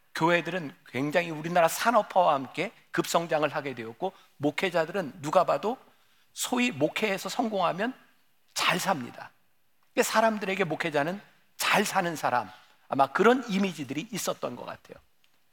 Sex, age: male, 50-69